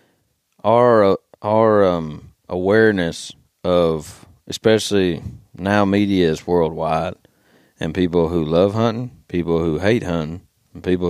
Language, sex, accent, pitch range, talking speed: English, male, American, 85-105 Hz, 115 wpm